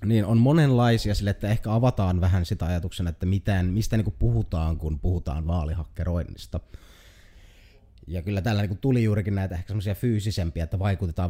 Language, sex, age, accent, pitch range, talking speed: Finnish, male, 30-49, native, 85-105 Hz, 160 wpm